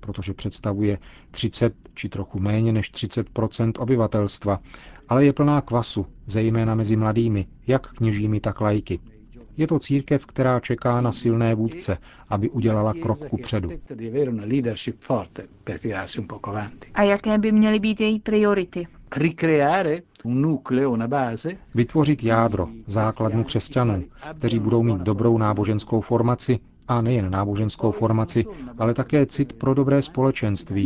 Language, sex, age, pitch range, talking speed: Czech, male, 40-59, 105-130 Hz, 115 wpm